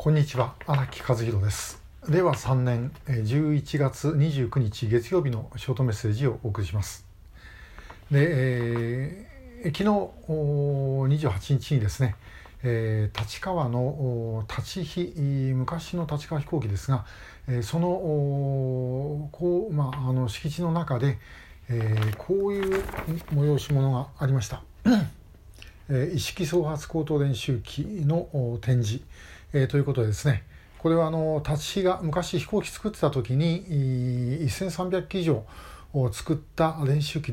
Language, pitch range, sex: Japanese, 120-160 Hz, male